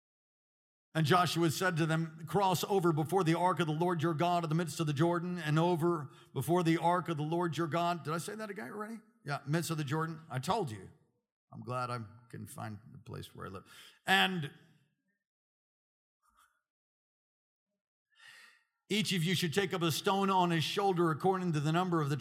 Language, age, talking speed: English, 50-69, 195 wpm